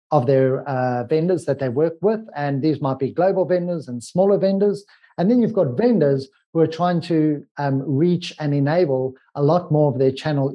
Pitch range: 135-175 Hz